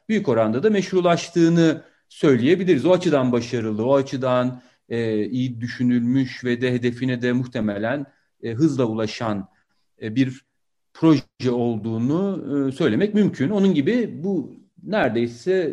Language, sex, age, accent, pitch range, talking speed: Turkish, male, 40-59, native, 125-165 Hz, 120 wpm